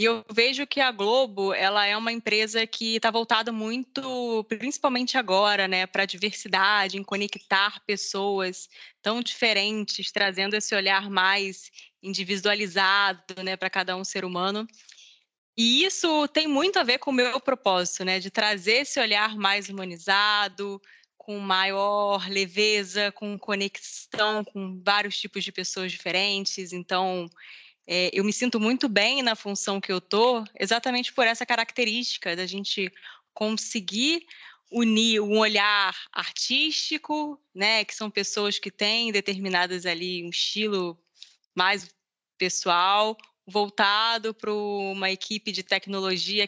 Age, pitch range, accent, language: 20-39, 195-225 Hz, Brazilian, Portuguese